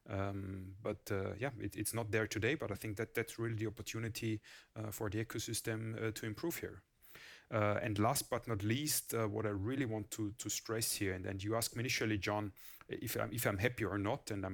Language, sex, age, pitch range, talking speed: English, male, 30-49, 105-120 Hz, 230 wpm